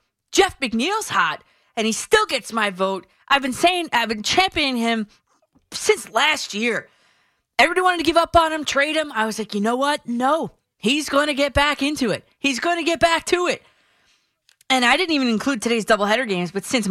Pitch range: 205-290 Hz